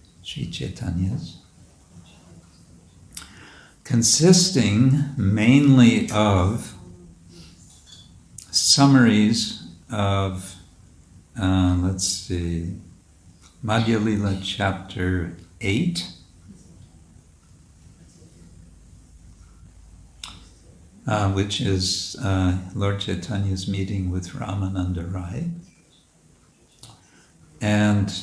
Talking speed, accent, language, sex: 50 wpm, American, English, male